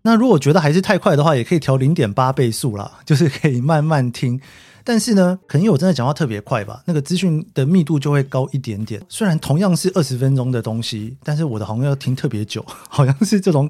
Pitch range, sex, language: 120-165 Hz, male, Chinese